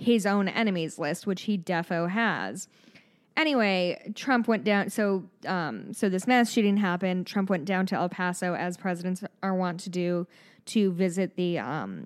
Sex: female